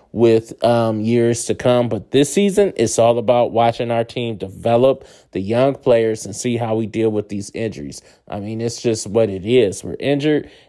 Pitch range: 110-130 Hz